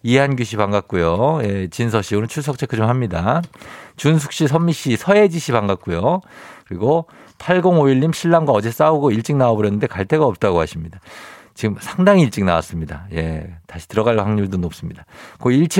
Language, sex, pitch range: Korean, male, 95-140 Hz